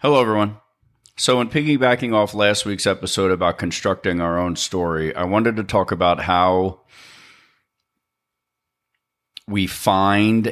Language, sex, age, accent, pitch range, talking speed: English, male, 40-59, American, 85-105 Hz, 125 wpm